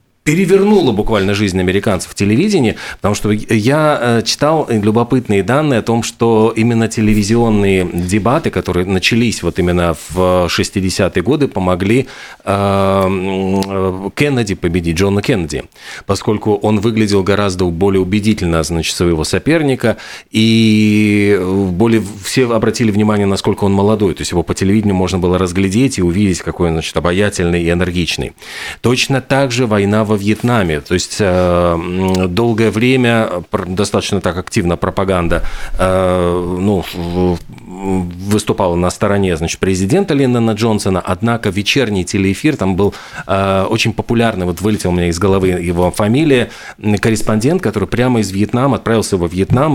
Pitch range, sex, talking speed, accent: 90-115 Hz, male, 130 wpm, native